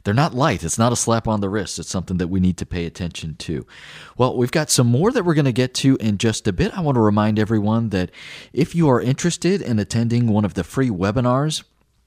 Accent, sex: American, male